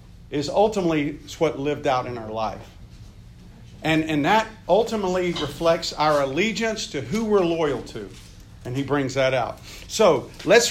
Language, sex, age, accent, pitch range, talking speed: English, male, 50-69, American, 135-200 Hz, 150 wpm